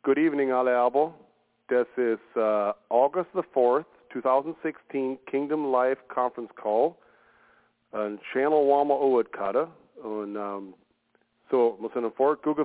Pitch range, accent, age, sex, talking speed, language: 115-140 Hz, American, 50-69, male, 115 wpm, English